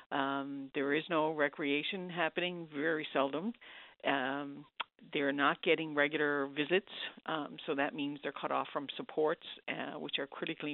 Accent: American